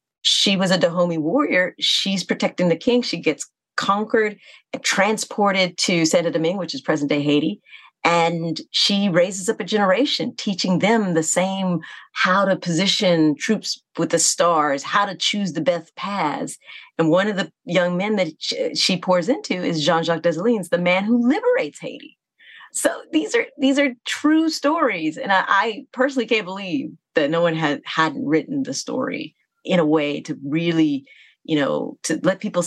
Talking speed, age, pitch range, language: 170 wpm, 40-59, 165-260 Hz, English